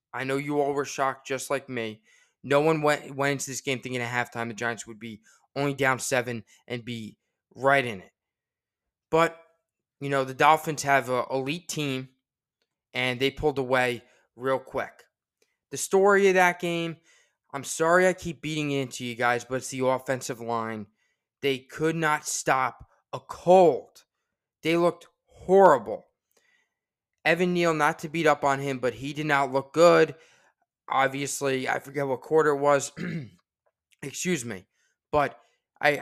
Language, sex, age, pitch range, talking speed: English, male, 20-39, 130-165 Hz, 165 wpm